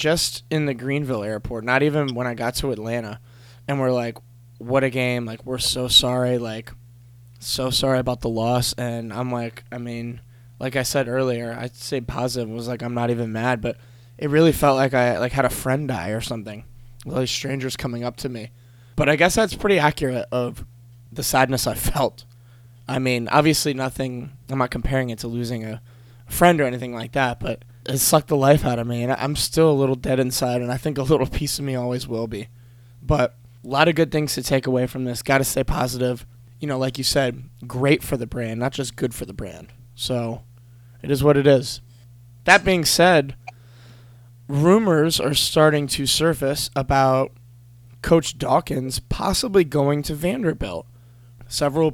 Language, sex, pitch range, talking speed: English, male, 120-140 Hz, 195 wpm